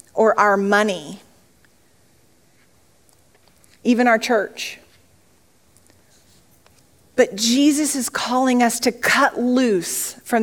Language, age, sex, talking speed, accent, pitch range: English, 40-59, female, 85 wpm, American, 205-255 Hz